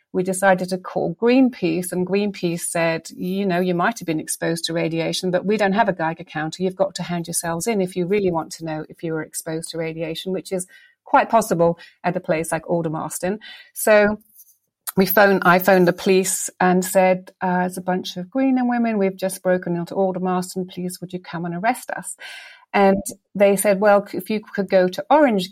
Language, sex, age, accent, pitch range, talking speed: English, female, 40-59, British, 180-210 Hz, 210 wpm